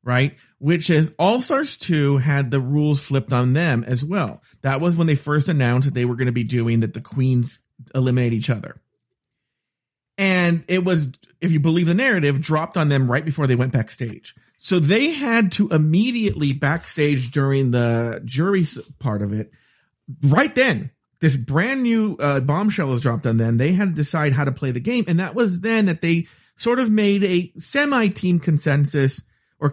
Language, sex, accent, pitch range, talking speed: English, male, American, 130-185 Hz, 190 wpm